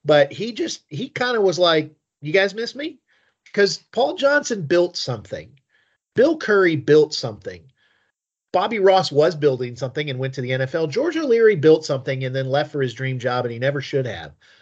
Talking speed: 190 wpm